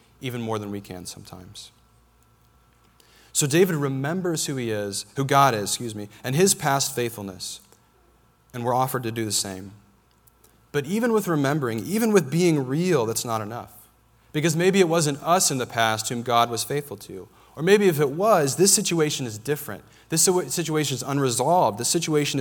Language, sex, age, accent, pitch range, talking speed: English, male, 30-49, American, 115-155 Hz, 180 wpm